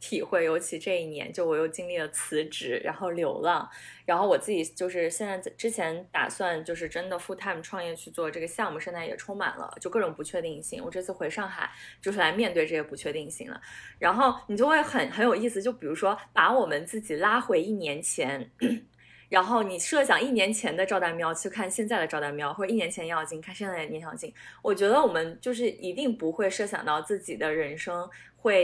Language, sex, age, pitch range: Chinese, female, 20-39, 165-230 Hz